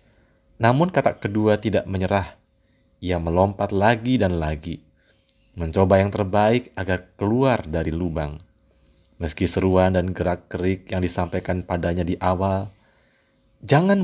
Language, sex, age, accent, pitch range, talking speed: Indonesian, male, 30-49, native, 85-105 Hz, 120 wpm